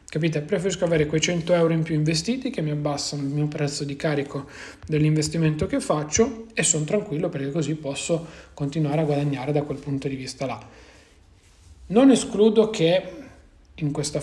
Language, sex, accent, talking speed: Italian, male, native, 170 wpm